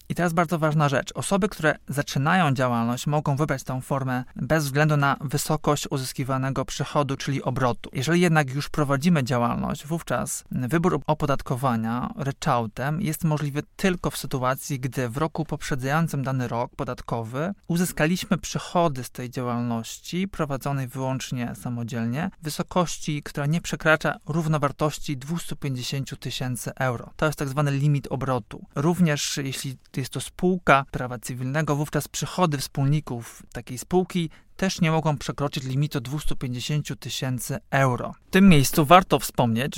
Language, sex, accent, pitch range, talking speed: Polish, male, native, 130-155 Hz, 135 wpm